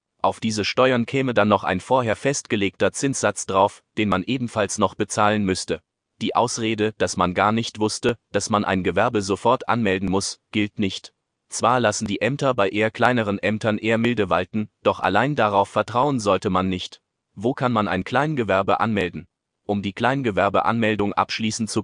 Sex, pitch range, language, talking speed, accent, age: male, 100-115 Hz, German, 170 wpm, German, 30-49